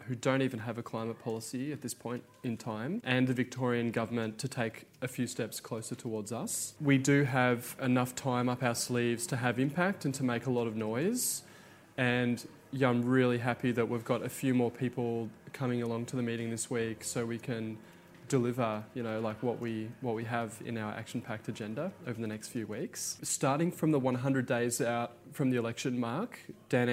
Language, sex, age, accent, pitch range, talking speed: English, male, 20-39, Australian, 115-130 Hz, 205 wpm